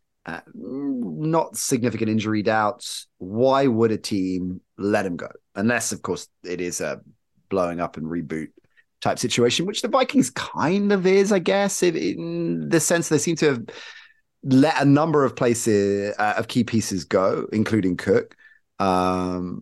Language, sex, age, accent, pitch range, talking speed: English, male, 30-49, British, 100-150 Hz, 160 wpm